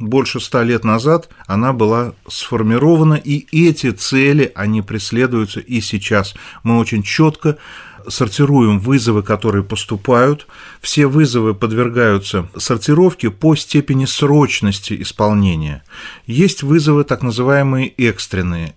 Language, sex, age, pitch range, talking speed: Russian, male, 40-59, 105-135 Hz, 110 wpm